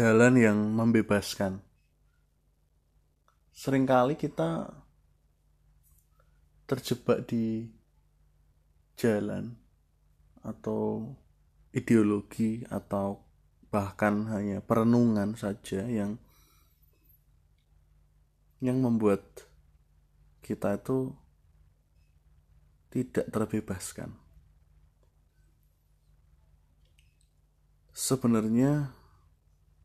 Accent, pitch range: native, 75-110 Hz